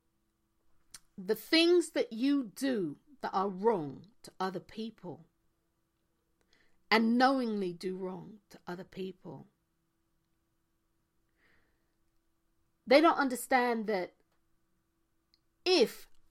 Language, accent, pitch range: English, British, 205-295 Hz